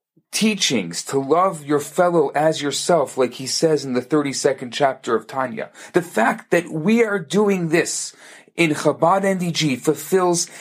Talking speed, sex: 155 wpm, male